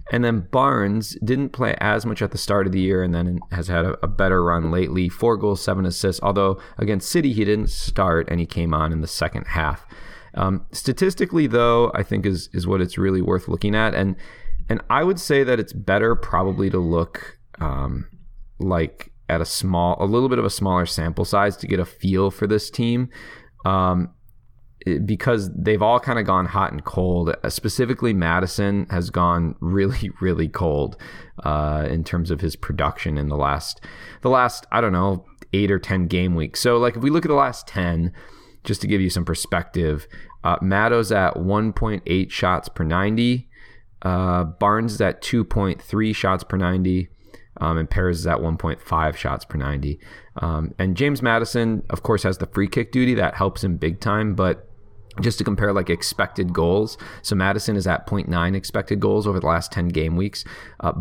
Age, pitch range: 20-39, 85-110 Hz